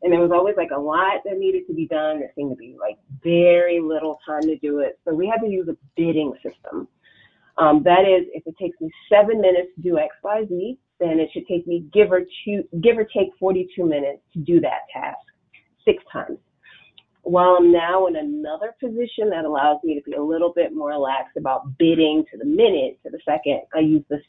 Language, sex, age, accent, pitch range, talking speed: English, female, 30-49, American, 155-205 Hz, 225 wpm